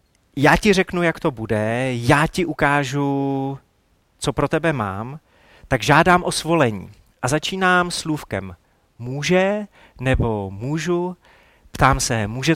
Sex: male